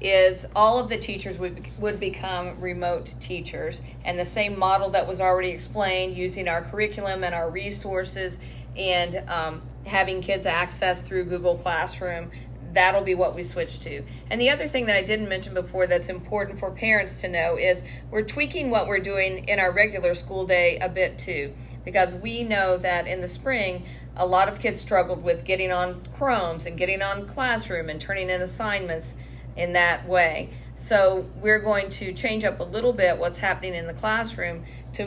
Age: 40-59